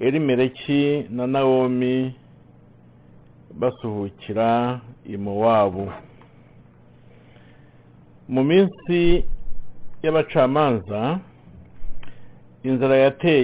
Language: English